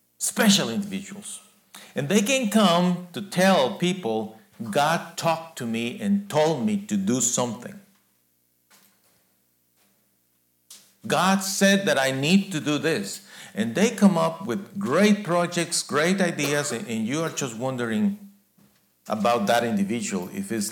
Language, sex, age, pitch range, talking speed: English, male, 50-69, 140-205 Hz, 135 wpm